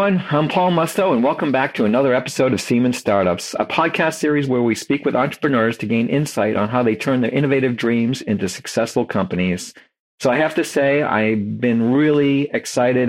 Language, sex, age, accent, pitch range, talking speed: English, male, 50-69, American, 105-140 Hz, 195 wpm